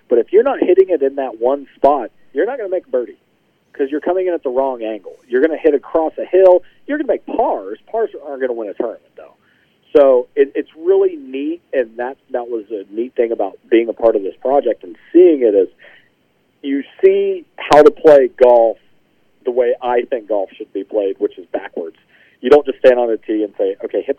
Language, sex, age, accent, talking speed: English, male, 40-59, American, 235 wpm